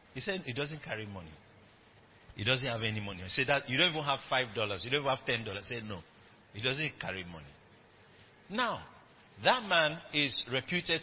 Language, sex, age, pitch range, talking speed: English, male, 50-69, 105-155 Hz, 195 wpm